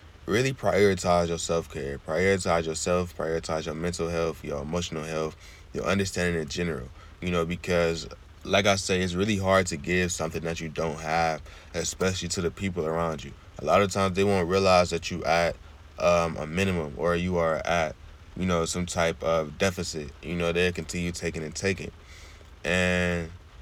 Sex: male